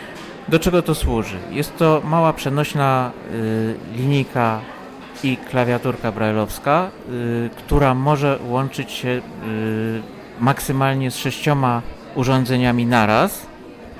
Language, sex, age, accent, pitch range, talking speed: Polish, male, 50-69, native, 115-140 Hz, 90 wpm